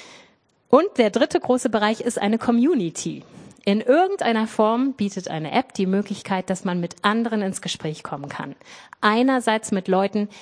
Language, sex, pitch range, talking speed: German, female, 190-245 Hz, 155 wpm